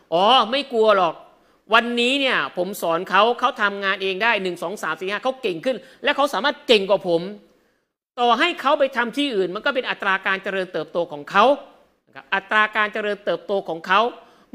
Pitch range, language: 195-255 Hz, Thai